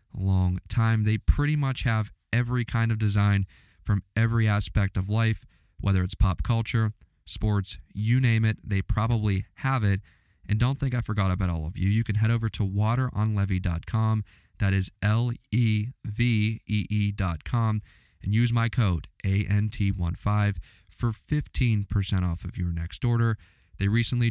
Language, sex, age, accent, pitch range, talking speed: English, male, 20-39, American, 95-115 Hz, 155 wpm